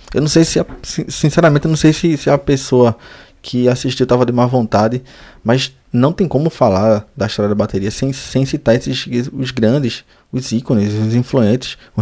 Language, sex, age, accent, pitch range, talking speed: Portuguese, male, 20-39, Brazilian, 110-130 Hz, 190 wpm